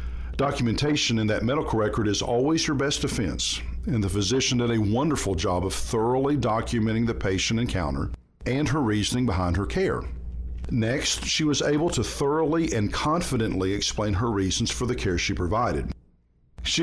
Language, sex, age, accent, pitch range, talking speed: English, male, 50-69, American, 90-130 Hz, 165 wpm